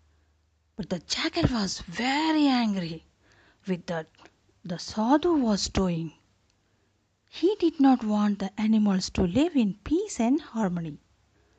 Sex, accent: female, native